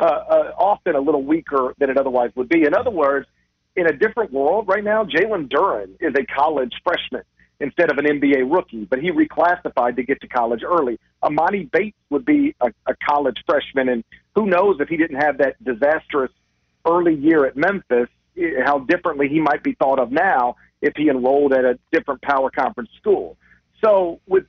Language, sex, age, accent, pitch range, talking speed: English, male, 50-69, American, 135-175 Hz, 195 wpm